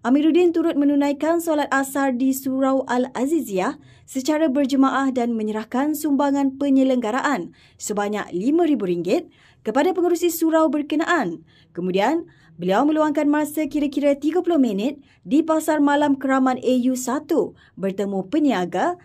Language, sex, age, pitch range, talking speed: Malay, female, 20-39, 245-305 Hz, 105 wpm